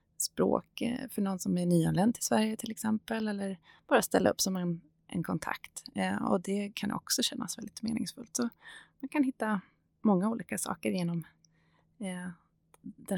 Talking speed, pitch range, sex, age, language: 165 wpm, 170-220 Hz, female, 30-49, Swedish